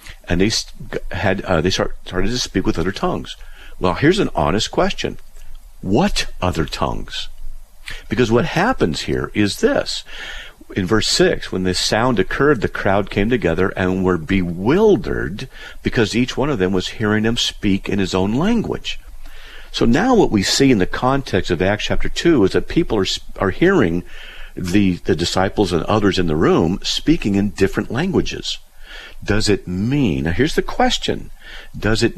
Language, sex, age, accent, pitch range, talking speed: English, male, 50-69, American, 90-110 Hz, 170 wpm